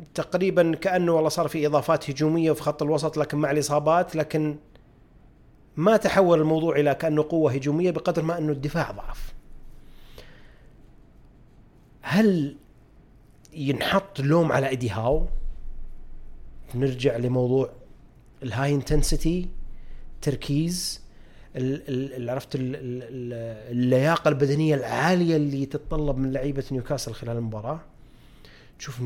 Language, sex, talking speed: Arabic, male, 100 wpm